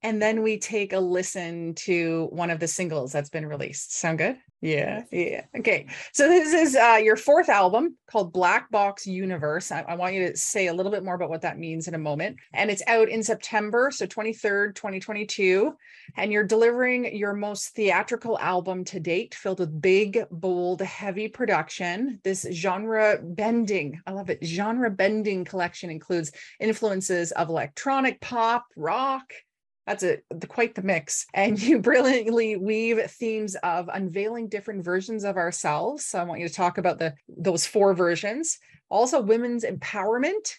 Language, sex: English, female